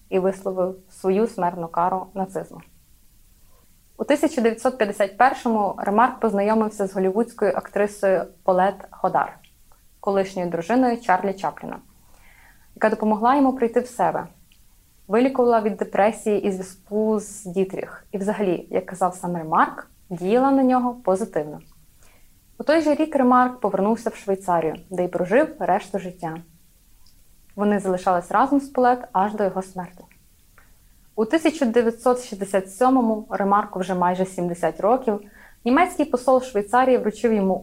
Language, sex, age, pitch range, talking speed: Ukrainian, female, 20-39, 185-240 Hz, 120 wpm